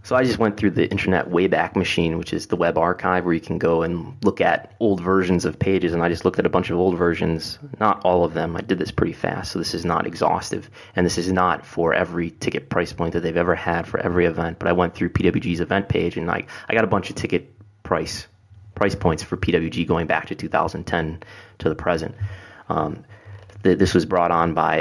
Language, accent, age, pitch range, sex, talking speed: English, American, 20-39, 85-100 Hz, male, 235 wpm